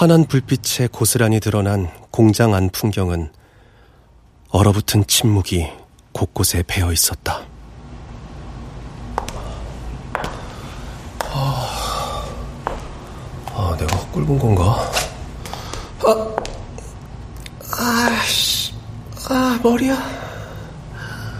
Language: Korean